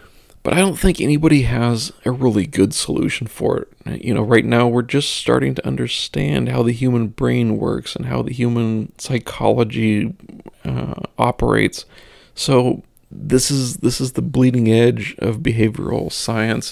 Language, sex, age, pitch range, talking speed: English, male, 40-59, 110-125 Hz, 160 wpm